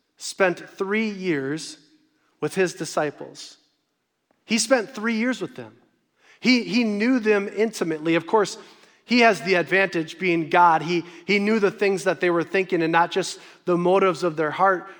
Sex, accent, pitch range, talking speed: male, American, 170-225 Hz, 170 wpm